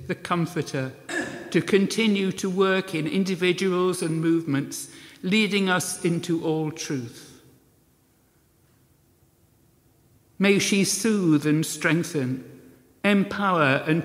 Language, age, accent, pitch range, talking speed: English, 60-79, British, 140-175 Hz, 95 wpm